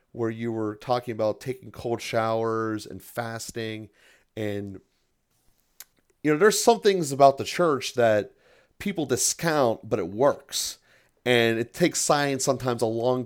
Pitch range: 110-135 Hz